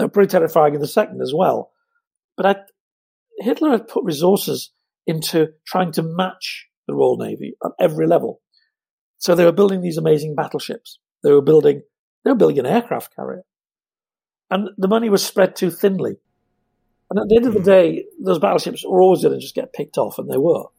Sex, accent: male, British